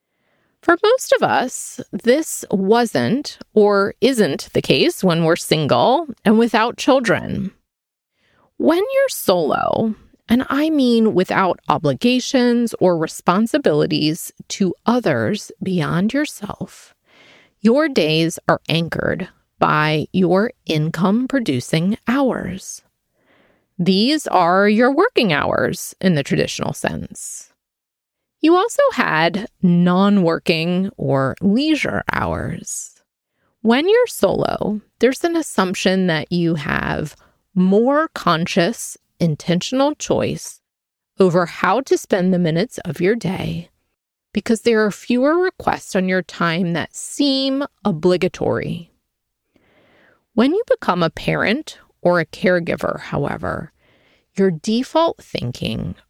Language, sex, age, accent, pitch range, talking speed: English, female, 30-49, American, 175-255 Hz, 105 wpm